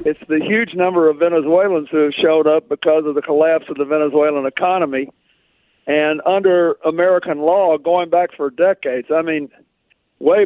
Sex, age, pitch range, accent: male, 60-79, 150-180 Hz, American